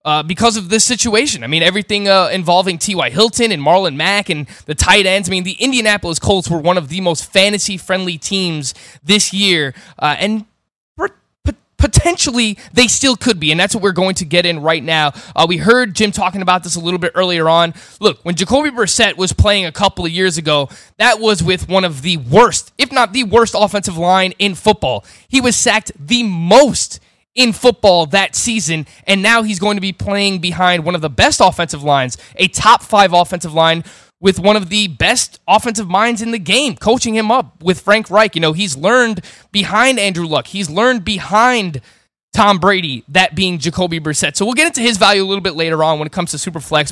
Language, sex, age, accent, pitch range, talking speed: English, male, 20-39, American, 170-215 Hz, 210 wpm